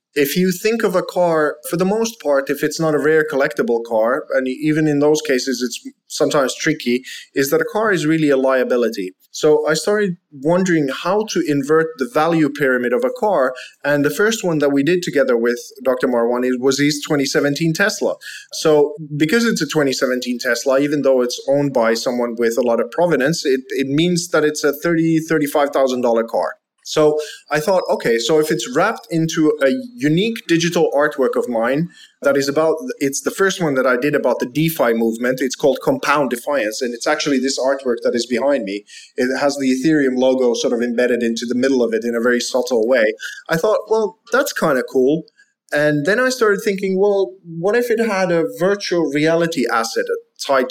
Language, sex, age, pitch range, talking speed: English, male, 30-49, 130-170 Hz, 200 wpm